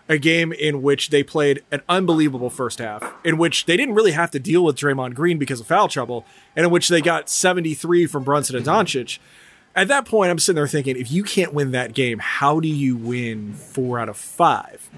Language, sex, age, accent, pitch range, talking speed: English, male, 30-49, American, 140-180 Hz, 225 wpm